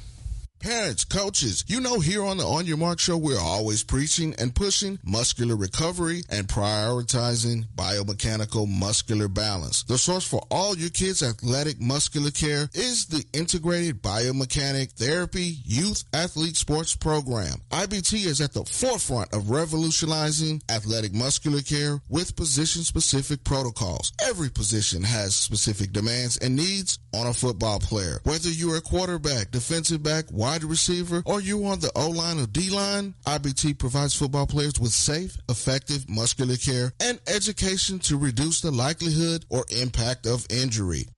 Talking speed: 150 wpm